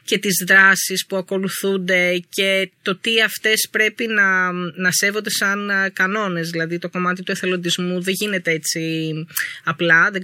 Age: 20-39